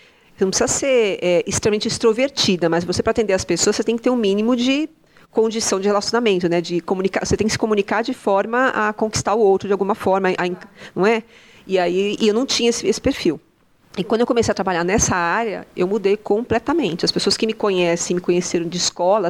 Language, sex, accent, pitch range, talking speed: Portuguese, female, Brazilian, 180-225 Hz, 225 wpm